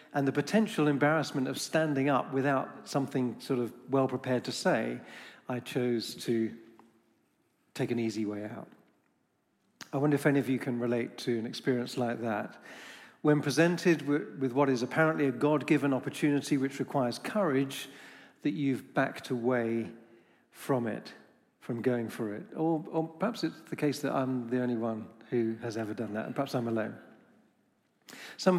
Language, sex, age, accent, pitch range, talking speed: English, male, 40-59, British, 125-155 Hz, 165 wpm